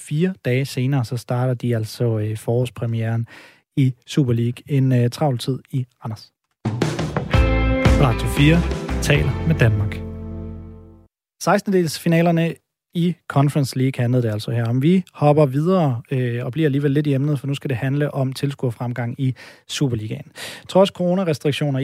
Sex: male